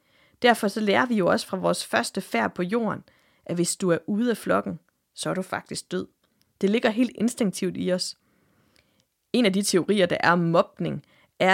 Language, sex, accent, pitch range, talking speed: English, female, Danish, 180-230 Hz, 205 wpm